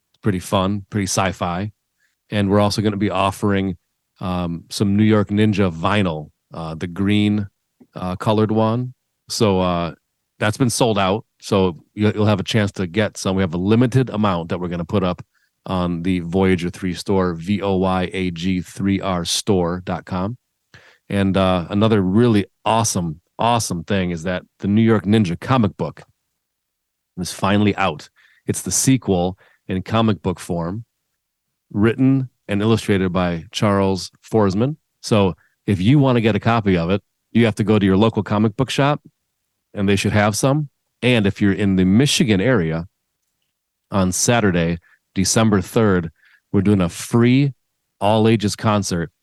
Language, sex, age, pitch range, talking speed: English, male, 40-59, 95-110 Hz, 155 wpm